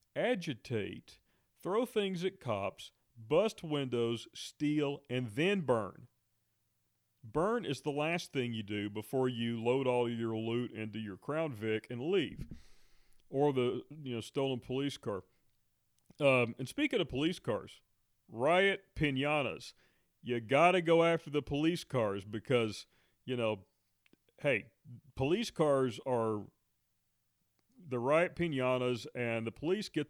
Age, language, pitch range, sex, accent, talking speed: 40-59, English, 110-145 Hz, male, American, 130 wpm